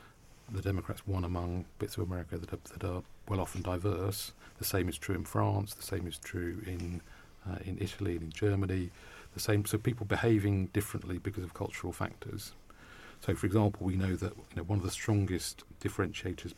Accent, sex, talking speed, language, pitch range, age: British, male, 190 wpm, English, 90-105 Hz, 40-59